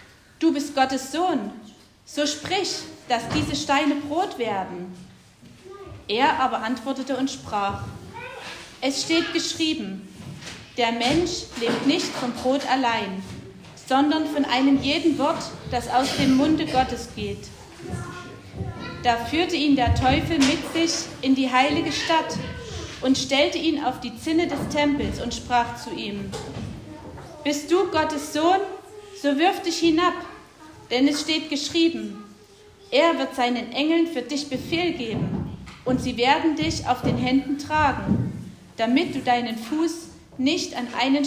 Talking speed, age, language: 140 wpm, 30-49, German